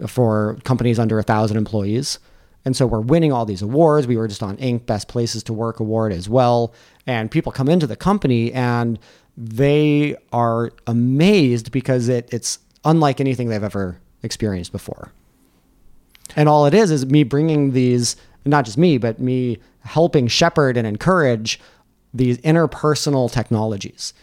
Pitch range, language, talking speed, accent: 115-150 Hz, English, 160 wpm, American